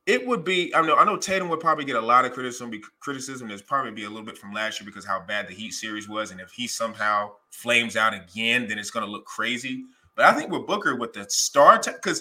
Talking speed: 270 wpm